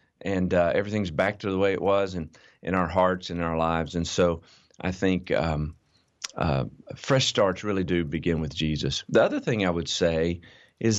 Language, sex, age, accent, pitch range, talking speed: English, male, 40-59, American, 85-105 Hz, 195 wpm